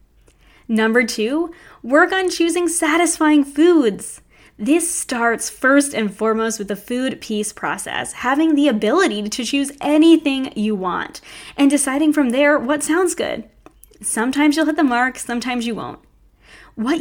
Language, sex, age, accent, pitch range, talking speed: English, female, 10-29, American, 220-295 Hz, 145 wpm